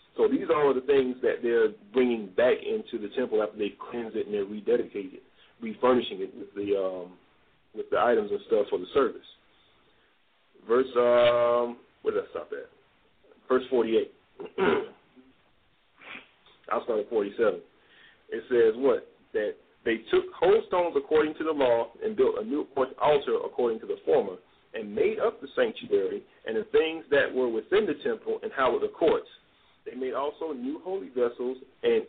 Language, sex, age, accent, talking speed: English, male, 40-59, American, 170 wpm